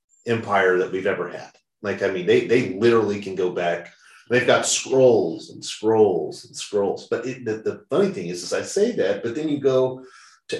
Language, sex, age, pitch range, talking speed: English, male, 30-49, 110-145 Hz, 205 wpm